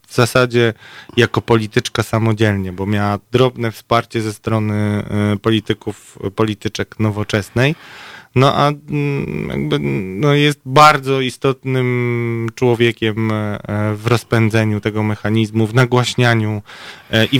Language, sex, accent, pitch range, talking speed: Polish, male, native, 110-135 Hz, 95 wpm